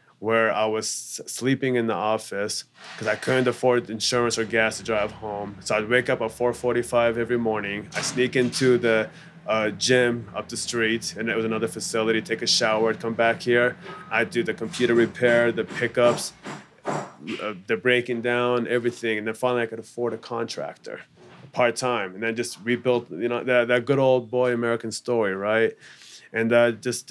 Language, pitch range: English, 110-120 Hz